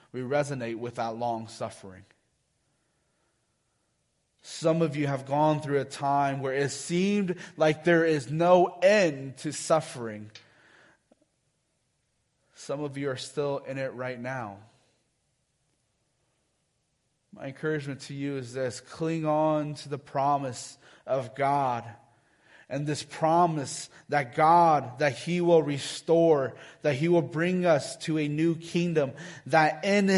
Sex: male